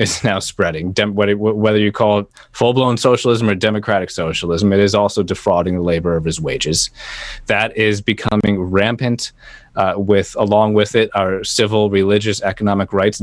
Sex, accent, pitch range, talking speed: male, American, 95-115 Hz, 160 wpm